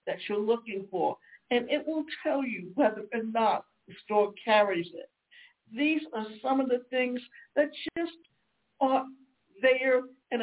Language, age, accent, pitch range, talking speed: English, 60-79, American, 205-250 Hz, 155 wpm